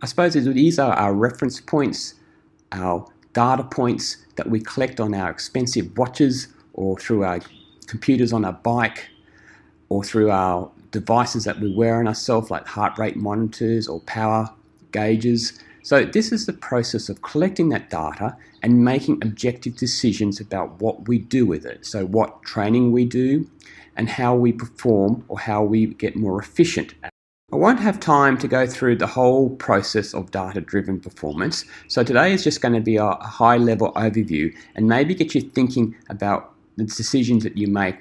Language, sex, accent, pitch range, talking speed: English, male, Australian, 100-125 Hz, 170 wpm